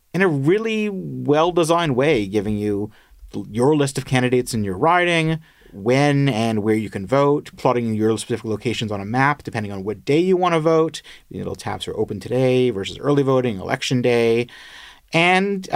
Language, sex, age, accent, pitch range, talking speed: English, male, 30-49, American, 110-170 Hz, 180 wpm